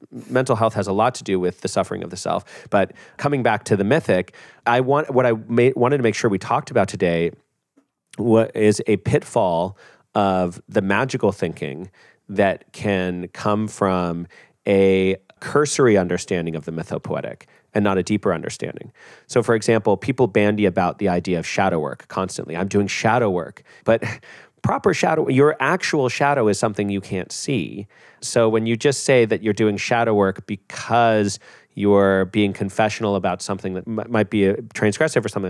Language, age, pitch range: English, 30-49, 95-115 Hz